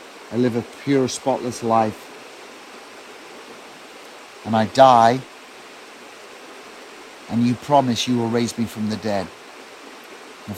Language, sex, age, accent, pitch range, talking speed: English, male, 50-69, British, 115-130 Hz, 115 wpm